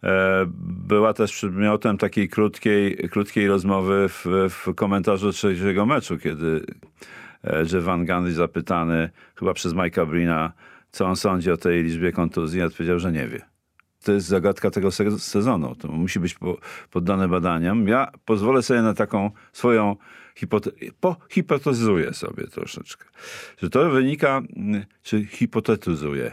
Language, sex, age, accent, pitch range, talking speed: Polish, male, 40-59, native, 85-110 Hz, 130 wpm